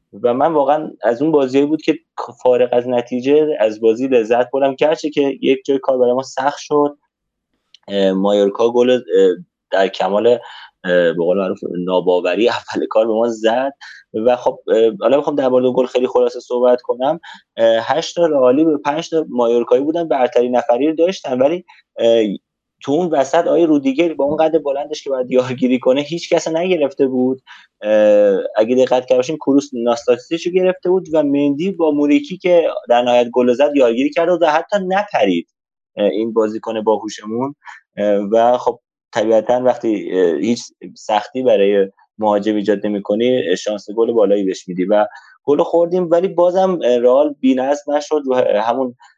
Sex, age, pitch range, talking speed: male, 30-49, 120-160 Hz, 155 wpm